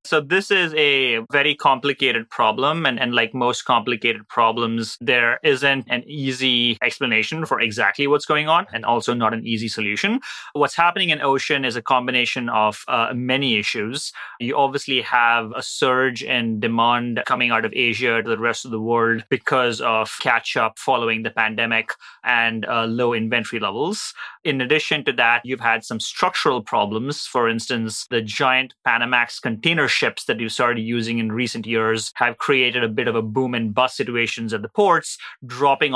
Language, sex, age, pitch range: English, male, 30-49, 115-140 Hz